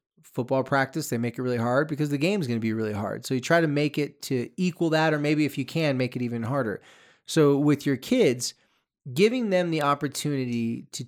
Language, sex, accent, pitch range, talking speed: English, male, American, 125-160 Hz, 225 wpm